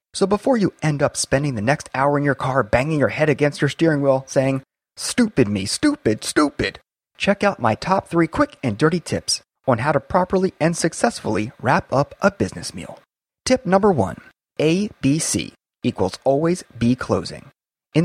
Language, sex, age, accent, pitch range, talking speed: English, male, 30-49, American, 125-170 Hz, 185 wpm